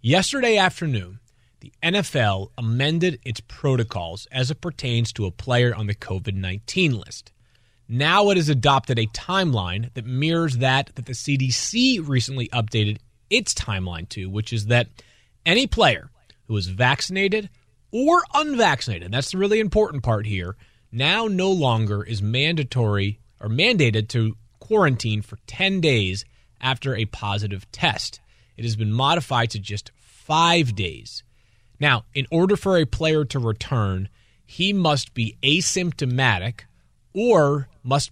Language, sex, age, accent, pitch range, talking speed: English, male, 30-49, American, 110-160 Hz, 140 wpm